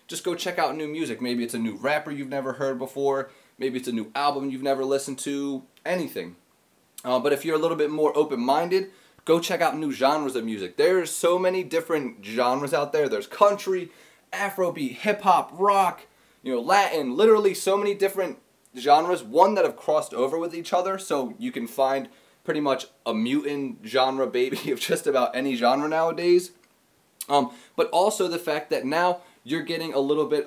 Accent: American